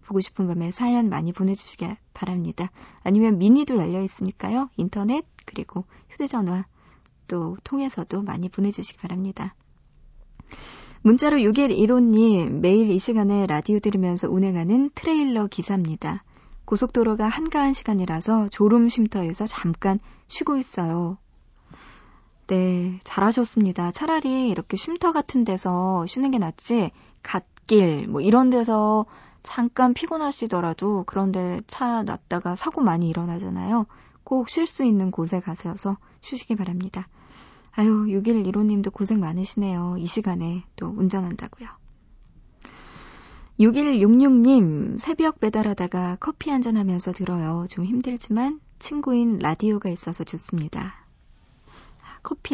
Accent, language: native, Korean